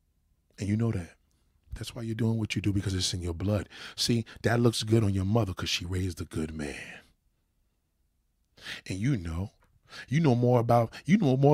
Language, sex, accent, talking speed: English, male, American, 205 wpm